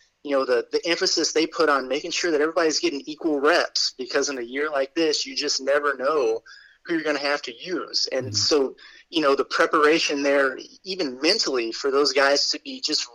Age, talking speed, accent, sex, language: 20-39, 215 wpm, American, male, English